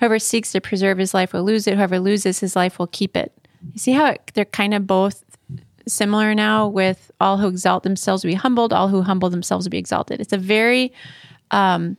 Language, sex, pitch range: English, female, 190-225 Hz